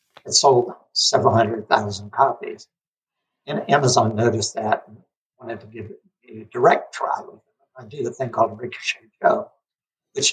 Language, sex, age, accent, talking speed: English, male, 60-79, American, 150 wpm